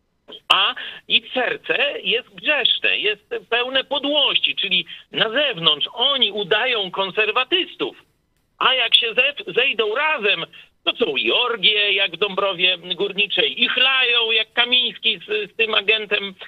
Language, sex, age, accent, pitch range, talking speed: Polish, male, 50-69, native, 200-265 Hz, 130 wpm